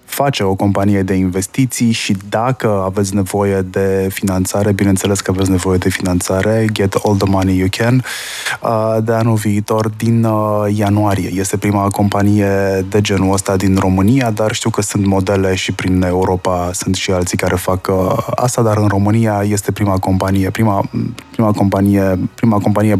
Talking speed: 155 wpm